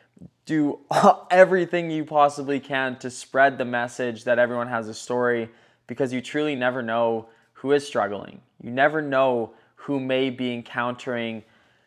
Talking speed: 145 wpm